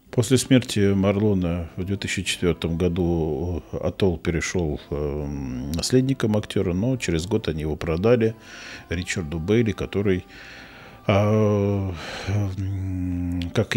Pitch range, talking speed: 80-110 Hz, 85 wpm